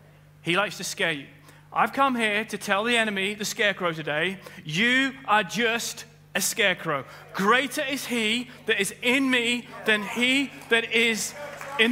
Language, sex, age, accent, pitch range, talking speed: English, male, 30-49, British, 175-235 Hz, 160 wpm